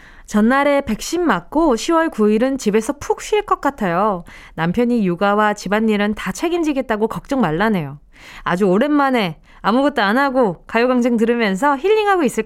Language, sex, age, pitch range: Korean, female, 20-39, 205-310 Hz